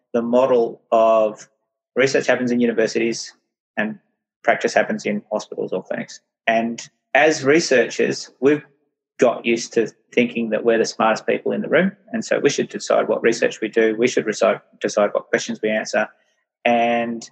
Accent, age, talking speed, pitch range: Australian, 30-49, 165 wpm, 115-130 Hz